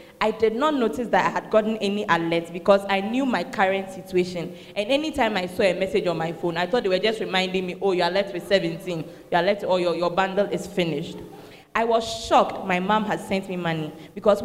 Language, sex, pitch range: English, female, 185-270 Hz